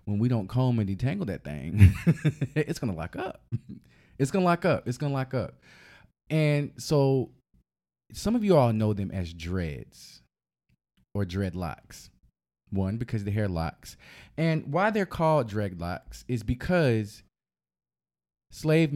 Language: English